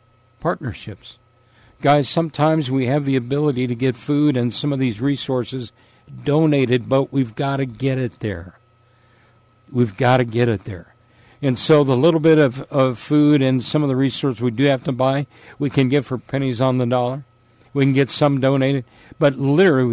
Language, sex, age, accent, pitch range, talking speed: English, male, 50-69, American, 115-145 Hz, 185 wpm